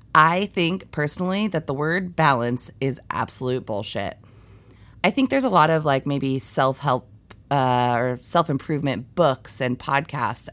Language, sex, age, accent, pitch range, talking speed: English, female, 30-49, American, 120-160 Hz, 135 wpm